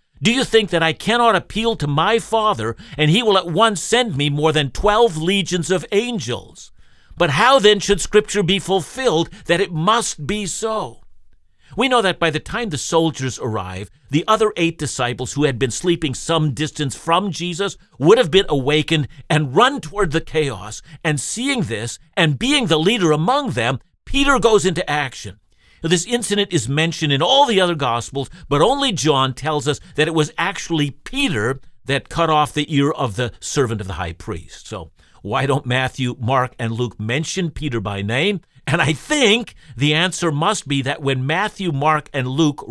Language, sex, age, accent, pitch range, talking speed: English, male, 50-69, American, 135-195 Hz, 185 wpm